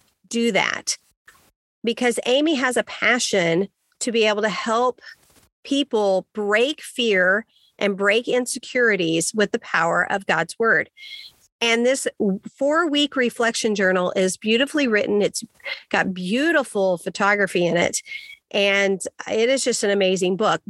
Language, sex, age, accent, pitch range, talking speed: English, female, 40-59, American, 200-265 Hz, 130 wpm